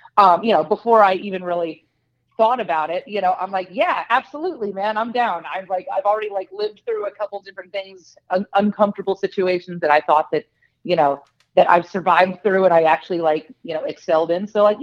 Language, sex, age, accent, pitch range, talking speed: English, female, 30-49, American, 165-220 Hz, 215 wpm